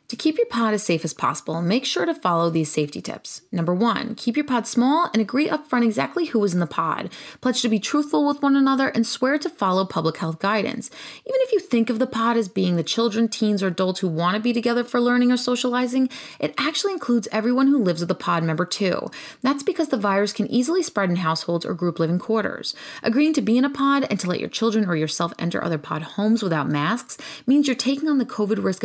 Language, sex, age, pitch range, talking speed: English, female, 30-49, 175-260 Hz, 245 wpm